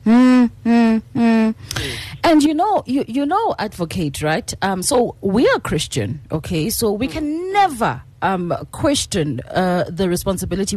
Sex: female